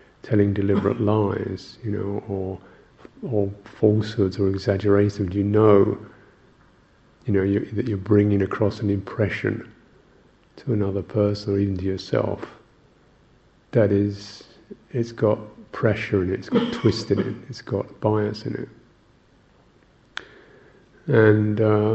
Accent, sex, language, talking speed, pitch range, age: British, male, English, 125 wpm, 105-115 Hz, 50-69